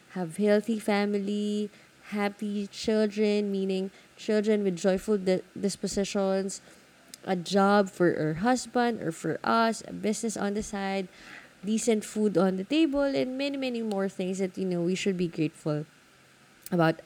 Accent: Filipino